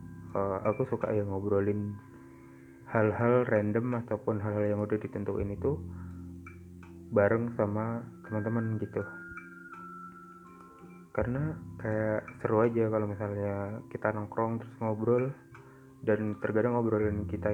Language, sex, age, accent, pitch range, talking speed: Indonesian, male, 20-39, native, 90-110 Hz, 105 wpm